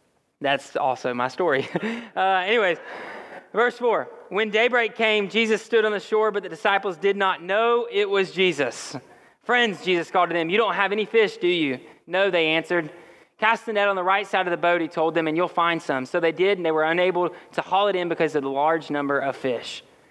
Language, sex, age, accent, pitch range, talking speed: English, male, 30-49, American, 155-200 Hz, 225 wpm